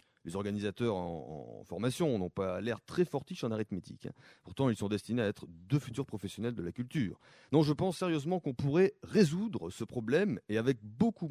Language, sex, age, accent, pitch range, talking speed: French, male, 30-49, French, 105-155 Hz, 190 wpm